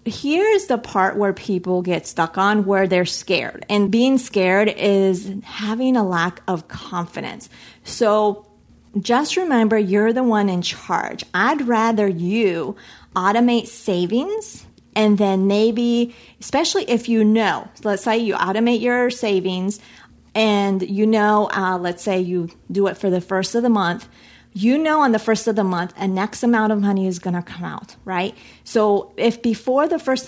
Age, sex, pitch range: 30-49, female, 190-235 Hz